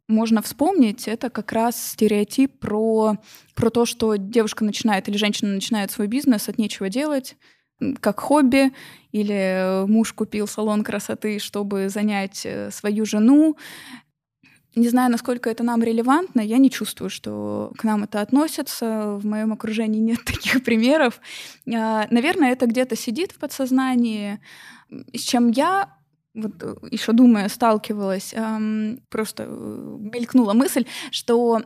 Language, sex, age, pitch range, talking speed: Russian, female, 20-39, 210-245 Hz, 130 wpm